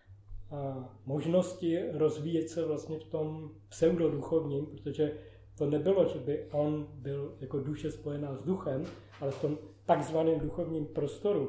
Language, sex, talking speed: Czech, male, 135 wpm